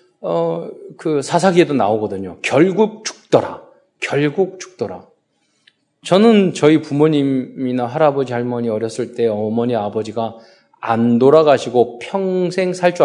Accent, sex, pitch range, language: native, male, 120-185 Hz, Korean